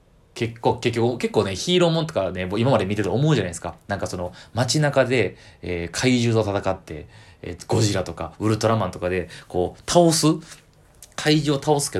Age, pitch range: 20-39, 95-140 Hz